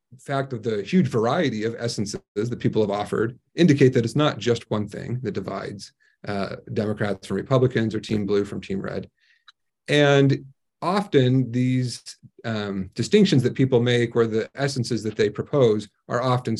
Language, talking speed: English, 165 wpm